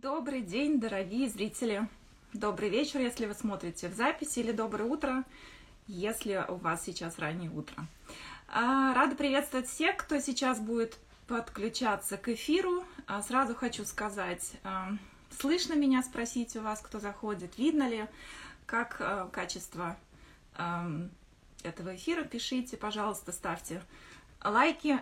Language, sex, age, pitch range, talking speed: German, female, 20-39, 205-270 Hz, 120 wpm